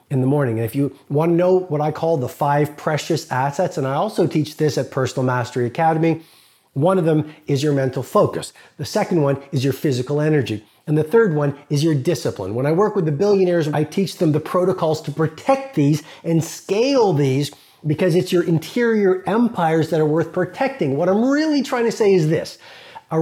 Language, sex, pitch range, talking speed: English, male, 140-185 Hz, 205 wpm